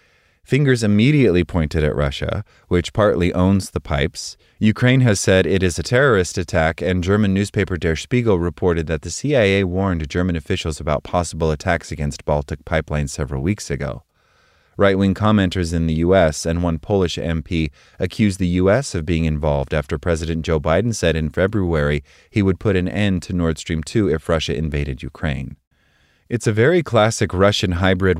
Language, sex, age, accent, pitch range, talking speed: English, male, 30-49, American, 80-105 Hz, 170 wpm